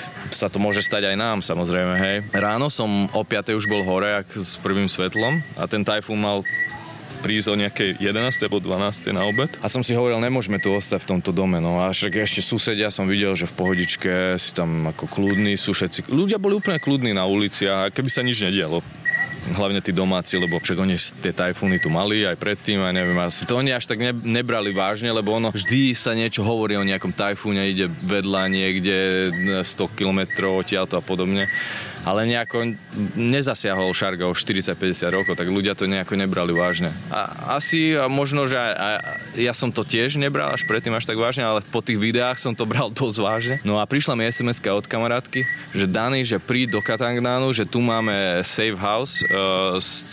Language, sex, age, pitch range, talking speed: Slovak, male, 20-39, 95-115 Hz, 195 wpm